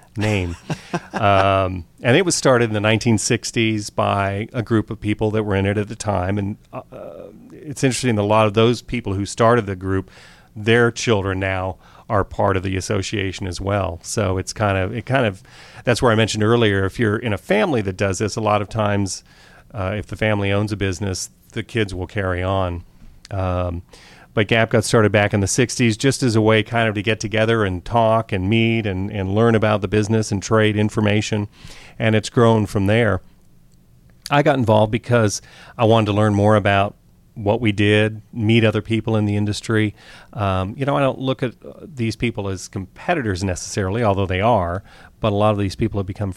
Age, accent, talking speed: 40-59, American, 205 wpm